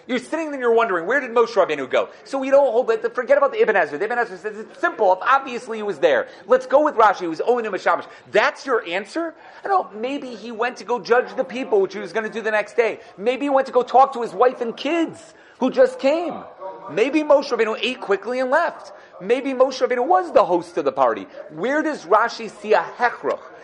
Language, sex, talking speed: English, male, 250 wpm